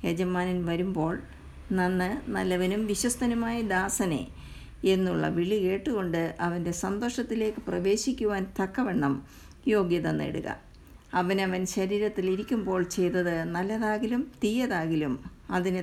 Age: 50-69